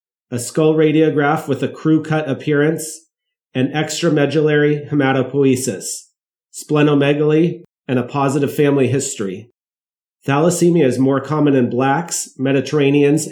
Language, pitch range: English, 130-155 Hz